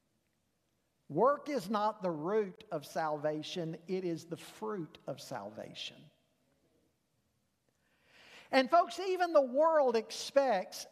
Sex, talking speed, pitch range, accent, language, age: male, 105 wpm, 215-295 Hz, American, English, 50-69